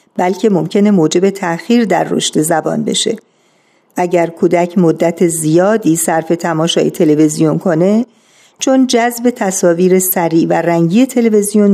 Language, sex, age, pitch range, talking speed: Persian, female, 50-69, 170-215 Hz, 120 wpm